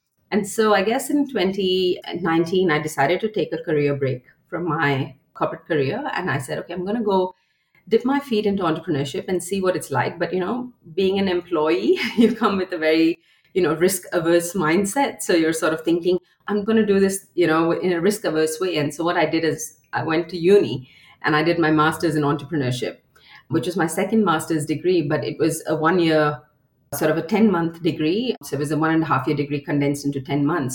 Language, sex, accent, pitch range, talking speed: English, female, Indian, 150-185 Hz, 220 wpm